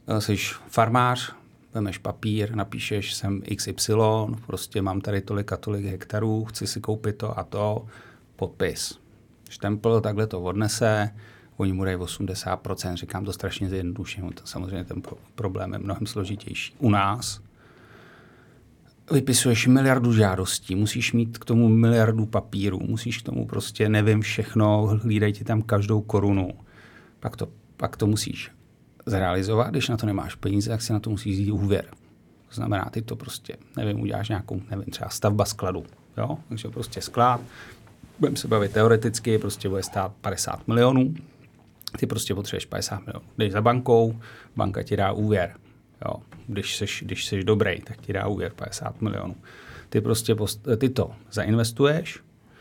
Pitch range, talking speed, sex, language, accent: 100-115 Hz, 150 wpm, male, Czech, native